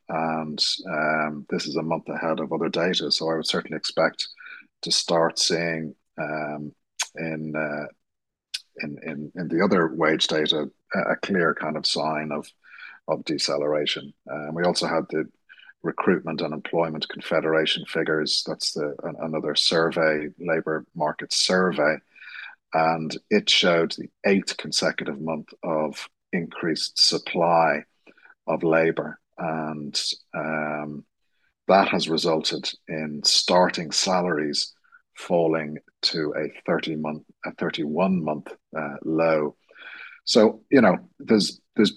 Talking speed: 125 wpm